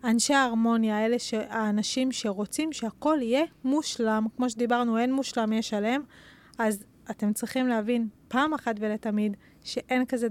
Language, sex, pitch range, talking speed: Hebrew, female, 220-250 Hz, 140 wpm